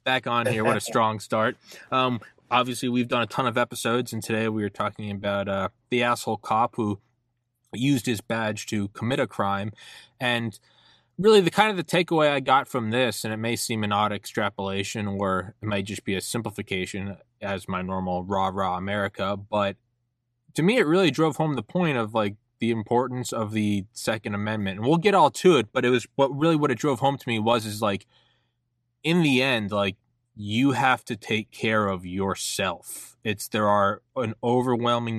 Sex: male